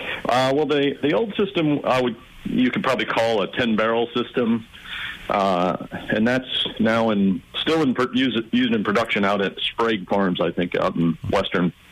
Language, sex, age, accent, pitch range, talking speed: English, male, 50-69, American, 95-120 Hz, 185 wpm